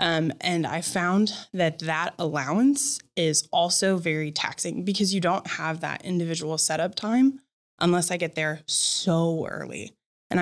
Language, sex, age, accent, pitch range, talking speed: English, female, 20-39, American, 155-200 Hz, 150 wpm